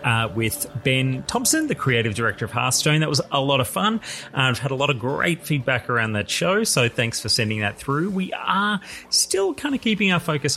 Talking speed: 225 wpm